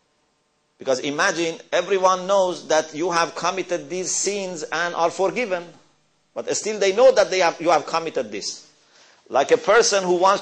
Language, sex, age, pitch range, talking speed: English, male, 50-69, 175-275 Hz, 165 wpm